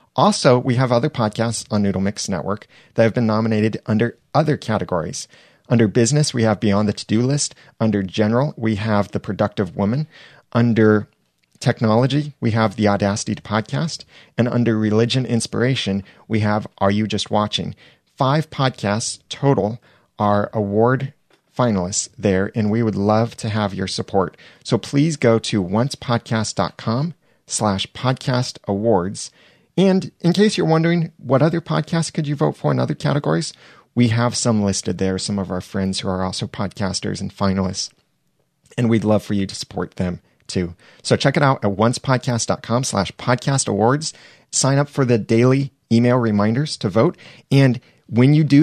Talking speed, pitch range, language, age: 165 wpm, 105-135 Hz, English, 30-49